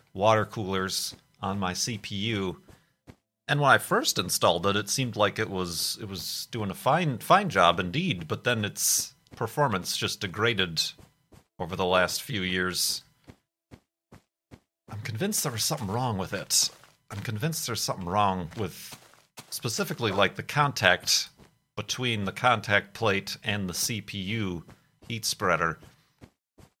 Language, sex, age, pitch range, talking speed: English, male, 40-59, 95-120 Hz, 140 wpm